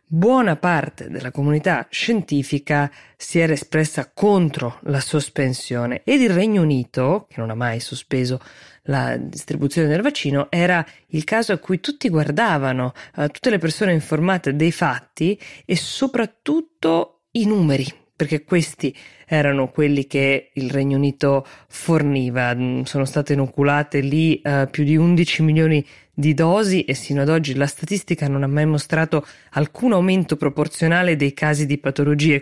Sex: female